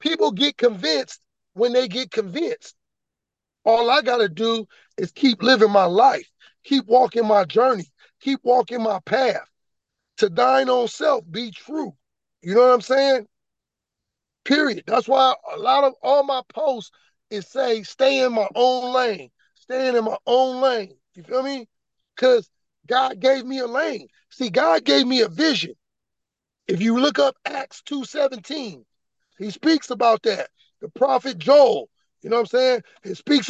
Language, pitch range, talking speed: English, 220-270 Hz, 165 wpm